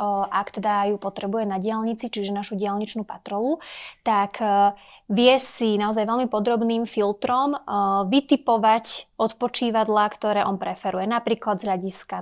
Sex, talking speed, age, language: female, 125 wpm, 20-39, Slovak